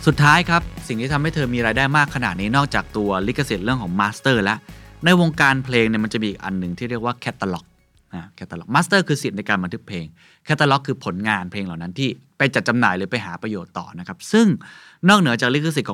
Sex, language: male, Thai